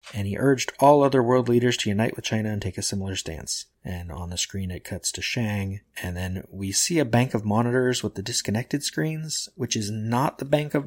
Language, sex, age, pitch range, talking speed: English, male, 20-39, 105-130 Hz, 230 wpm